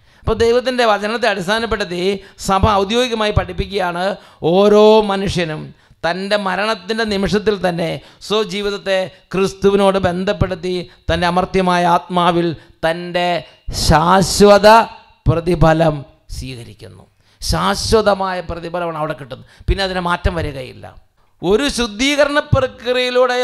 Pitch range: 170-225 Hz